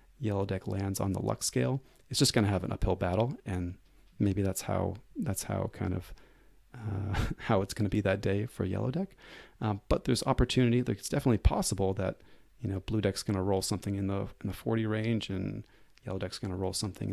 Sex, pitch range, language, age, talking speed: male, 95-120 Hz, English, 30-49, 220 wpm